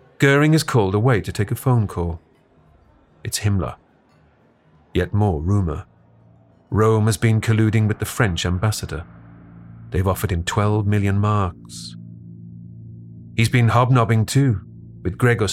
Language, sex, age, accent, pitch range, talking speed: English, male, 40-59, British, 85-120 Hz, 130 wpm